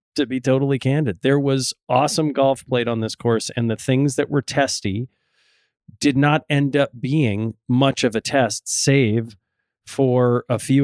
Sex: male